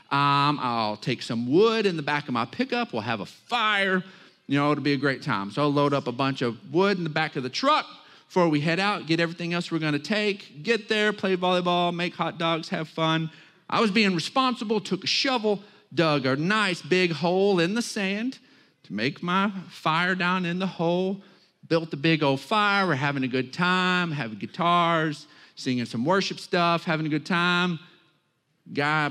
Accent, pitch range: American, 135-185 Hz